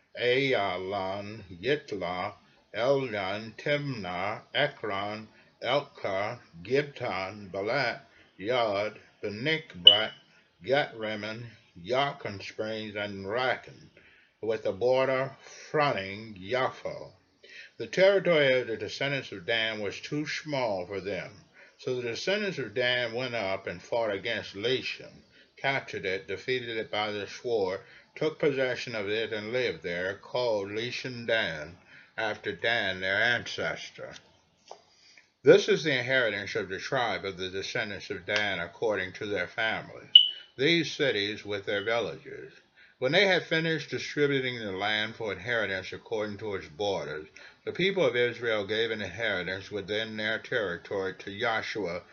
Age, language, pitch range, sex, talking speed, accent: 60-79, English, 105-140 Hz, male, 125 wpm, American